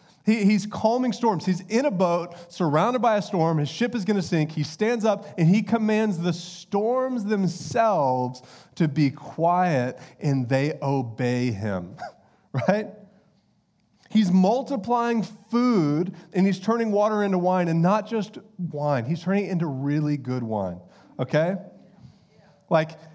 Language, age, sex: English, 30-49, male